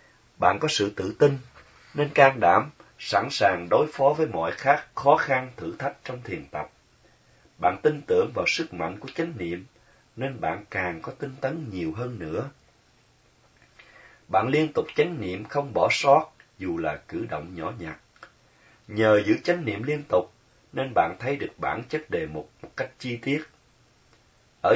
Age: 30-49